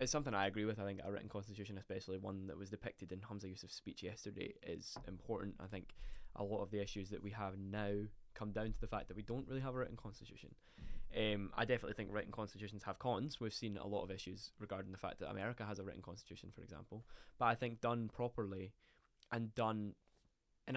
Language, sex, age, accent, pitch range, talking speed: English, male, 10-29, British, 100-120 Hz, 230 wpm